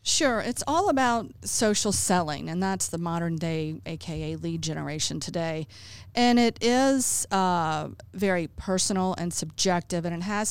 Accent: American